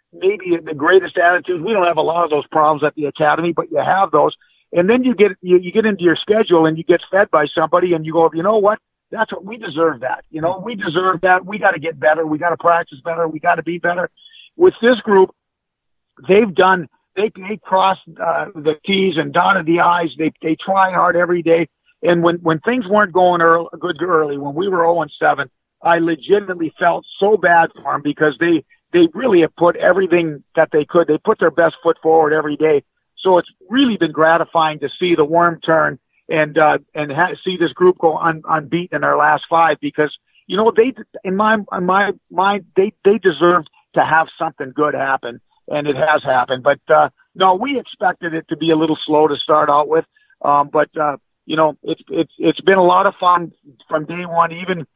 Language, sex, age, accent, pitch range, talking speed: English, male, 50-69, American, 155-190 Hz, 220 wpm